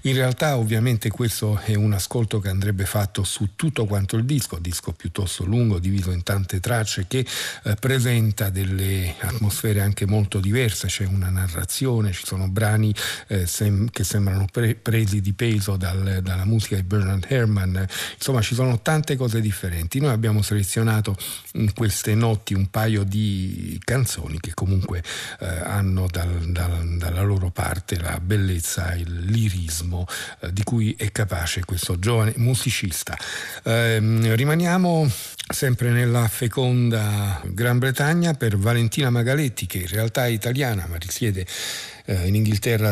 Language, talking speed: Italian, 140 wpm